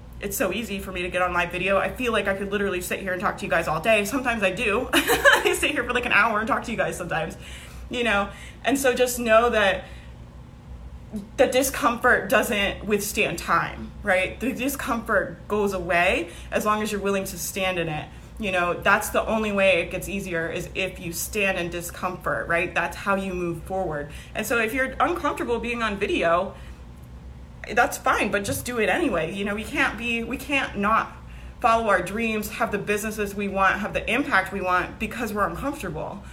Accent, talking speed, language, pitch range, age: American, 210 wpm, English, 185-235 Hz, 20-39